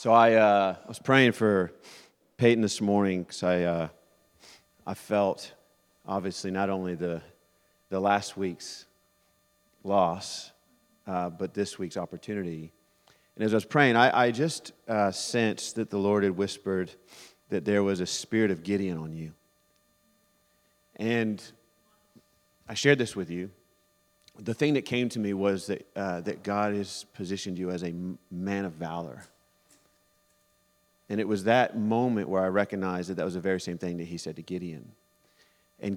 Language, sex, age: English, male, 40-59